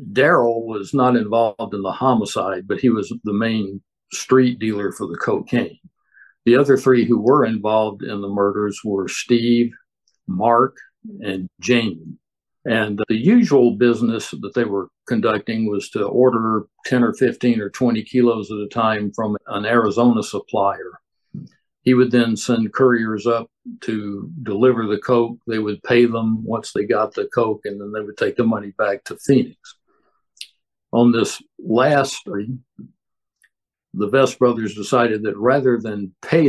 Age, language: 60-79, English